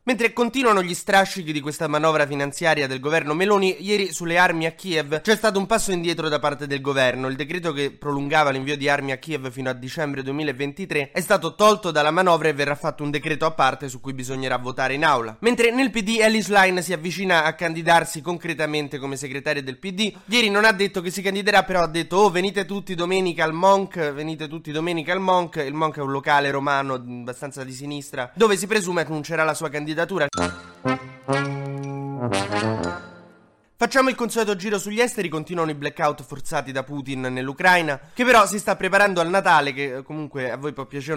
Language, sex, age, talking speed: Italian, male, 20-39, 195 wpm